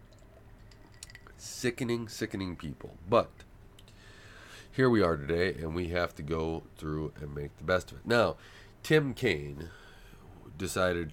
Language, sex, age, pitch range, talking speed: English, male, 30-49, 85-110 Hz, 130 wpm